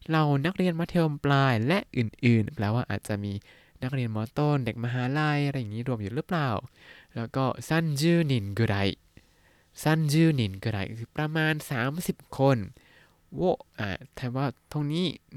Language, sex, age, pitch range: Thai, male, 20-39, 105-140 Hz